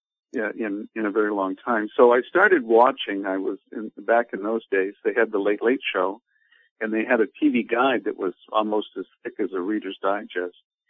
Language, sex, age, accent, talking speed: English, male, 50-69, American, 215 wpm